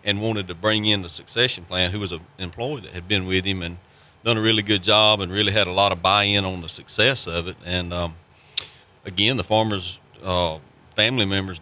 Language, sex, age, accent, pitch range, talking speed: English, male, 40-59, American, 90-105 Hz, 220 wpm